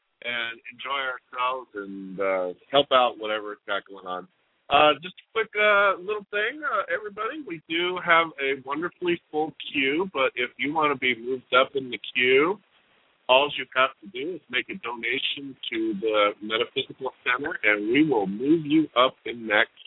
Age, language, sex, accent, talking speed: 50-69, English, male, American, 180 wpm